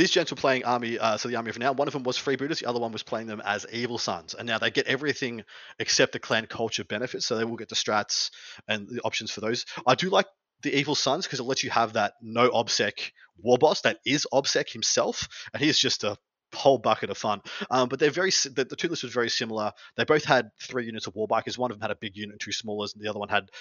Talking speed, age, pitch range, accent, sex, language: 270 wpm, 30-49, 110-135 Hz, Australian, male, English